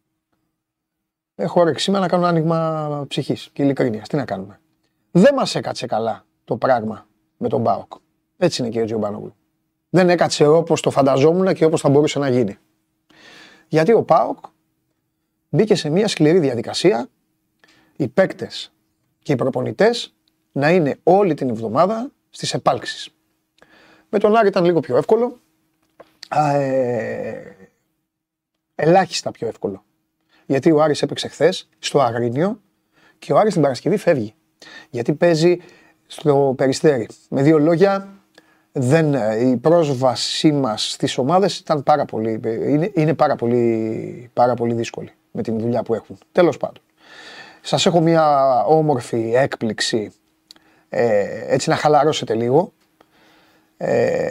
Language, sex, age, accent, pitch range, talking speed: Greek, male, 30-49, native, 135-170 Hz, 135 wpm